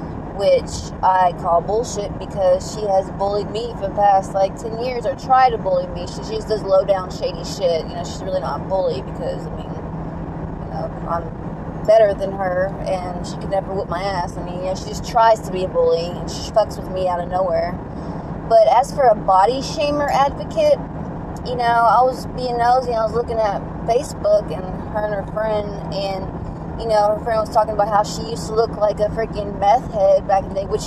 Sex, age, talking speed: female, 20-39, 220 wpm